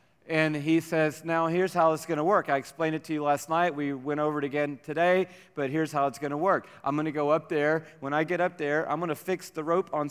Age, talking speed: 40-59, 285 wpm